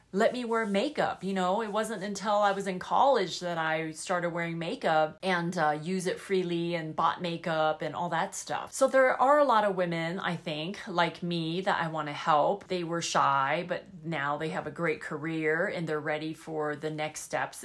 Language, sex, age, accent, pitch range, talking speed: English, female, 30-49, American, 160-200 Hz, 215 wpm